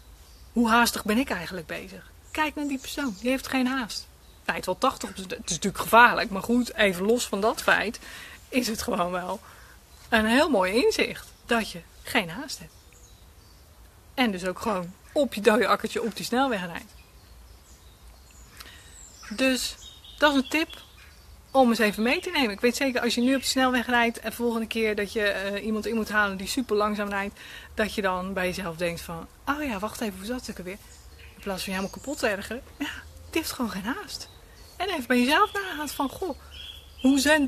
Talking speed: 205 wpm